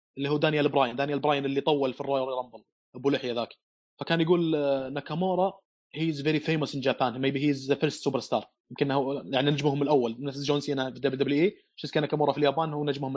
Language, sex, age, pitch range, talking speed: Arabic, male, 20-39, 140-160 Hz, 210 wpm